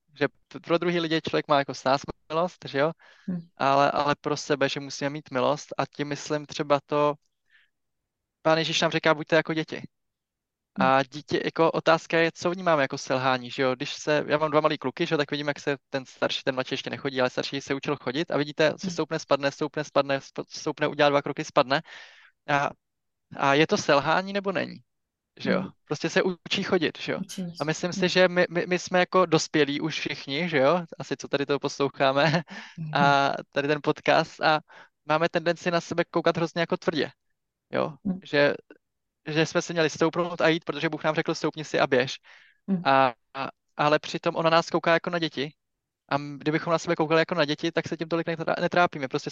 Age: 20-39